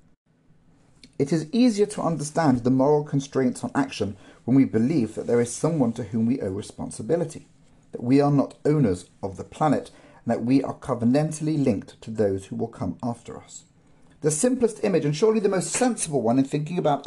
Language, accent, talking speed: English, British, 195 wpm